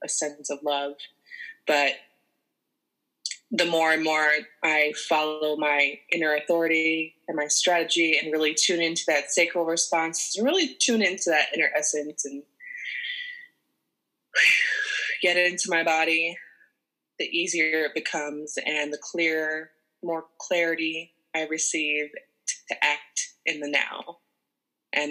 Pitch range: 150-170 Hz